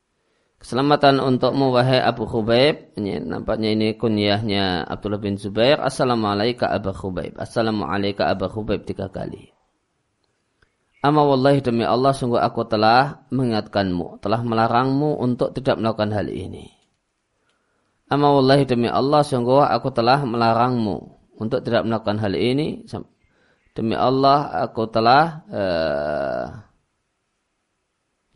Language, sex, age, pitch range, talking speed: Indonesian, male, 20-39, 105-130 Hz, 105 wpm